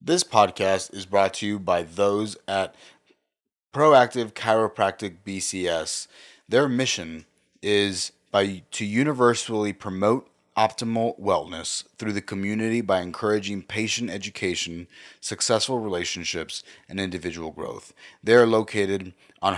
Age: 30-49